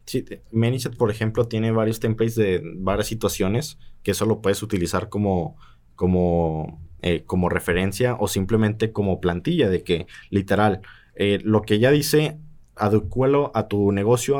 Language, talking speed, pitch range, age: Spanish, 150 wpm, 100-125 Hz, 20-39